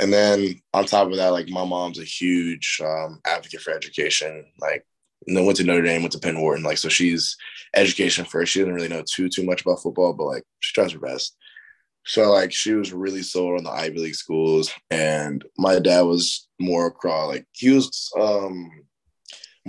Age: 10-29